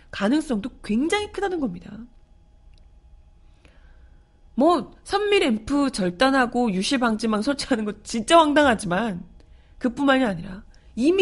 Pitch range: 175-285 Hz